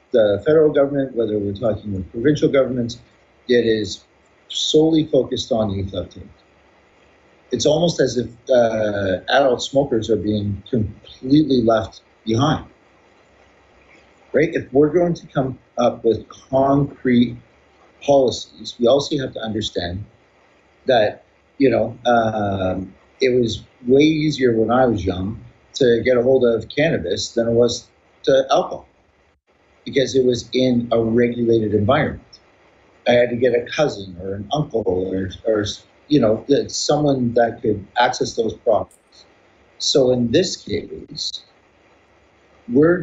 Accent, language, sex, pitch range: American, English, male, 105-130 Hz